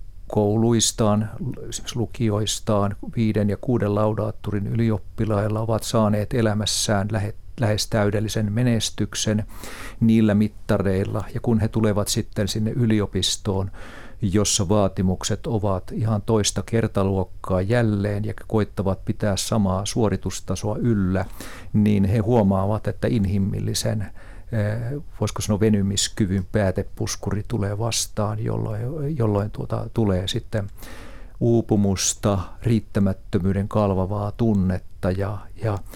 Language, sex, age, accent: Finnish, male, 50-69, native